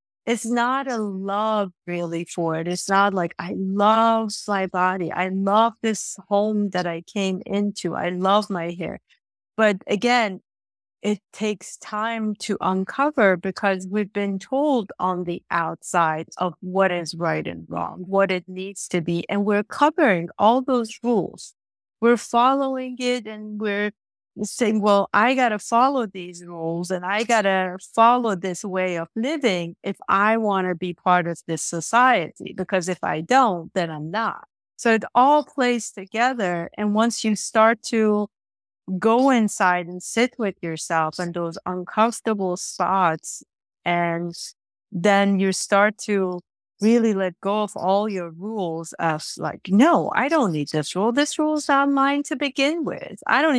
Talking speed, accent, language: 160 wpm, American, English